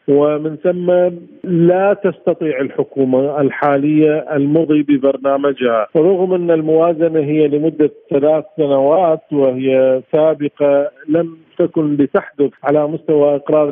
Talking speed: 100 wpm